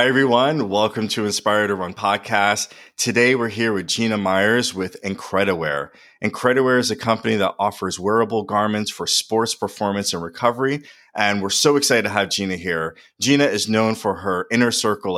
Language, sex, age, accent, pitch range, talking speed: English, male, 30-49, American, 95-120 Hz, 175 wpm